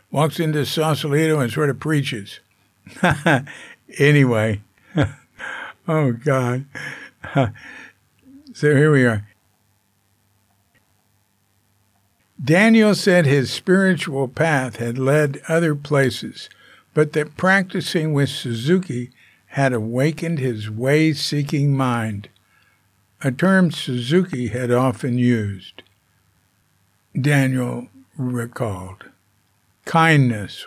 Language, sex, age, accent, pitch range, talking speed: English, male, 60-79, American, 100-145 Hz, 85 wpm